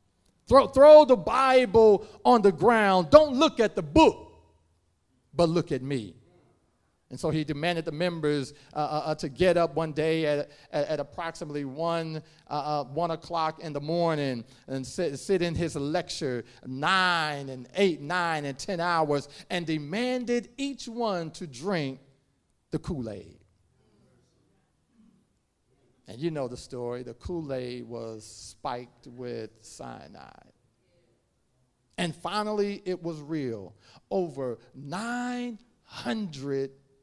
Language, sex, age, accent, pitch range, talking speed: English, male, 40-59, American, 125-180 Hz, 125 wpm